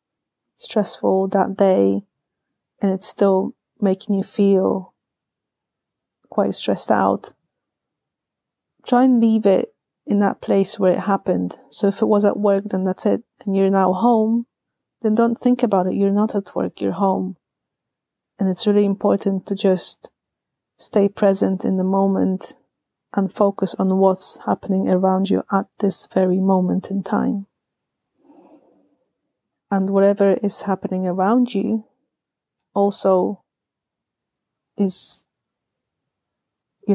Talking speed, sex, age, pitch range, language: 130 wpm, female, 30-49, 185-205 Hz, English